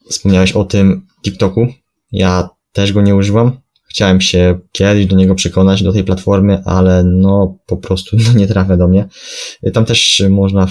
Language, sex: Polish, male